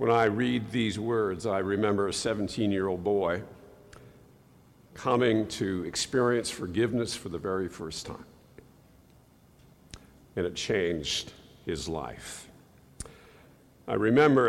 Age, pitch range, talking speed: 50-69, 95-125 Hz, 110 wpm